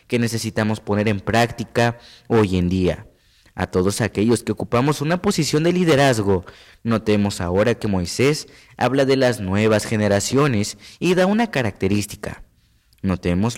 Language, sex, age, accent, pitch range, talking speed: Spanish, male, 20-39, Mexican, 95-125 Hz, 135 wpm